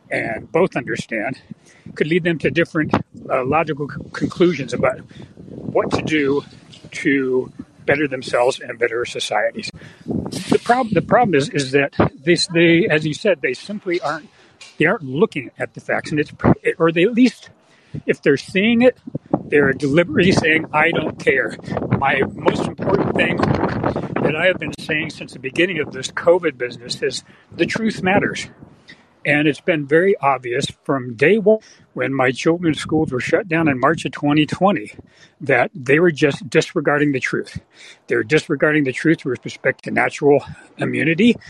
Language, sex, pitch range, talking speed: English, male, 140-180 Hz, 165 wpm